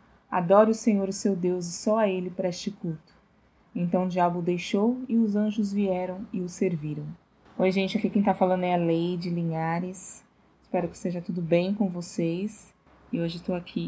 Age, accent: 20-39, Brazilian